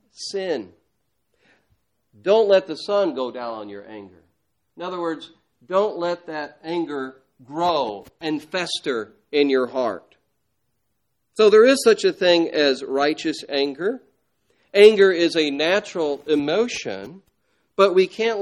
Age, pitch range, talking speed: 50-69, 140-205 Hz, 130 wpm